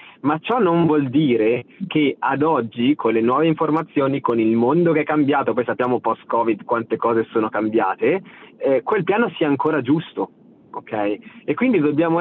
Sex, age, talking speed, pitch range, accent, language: male, 30-49, 170 wpm, 120-160 Hz, native, Italian